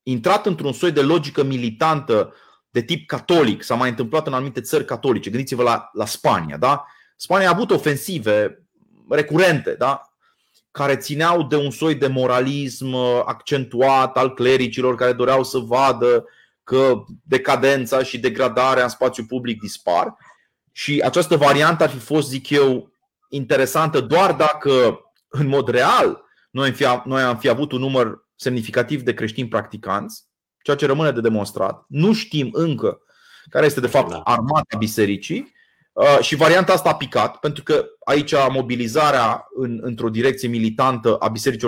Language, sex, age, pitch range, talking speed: Romanian, male, 30-49, 125-150 Hz, 150 wpm